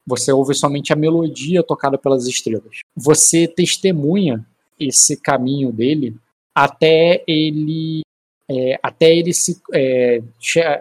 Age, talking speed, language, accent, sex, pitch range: 20-39, 115 wpm, Portuguese, Brazilian, male, 130-155 Hz